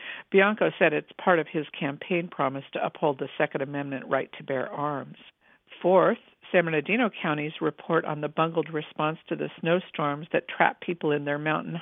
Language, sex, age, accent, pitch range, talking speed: English, female, 50-69, American, 145-170 Hz, 180 wpm